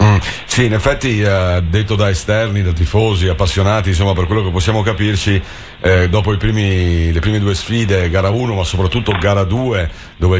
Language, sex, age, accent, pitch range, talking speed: Italian, male, 50-69, native, 95-110 Hz, 185 wpm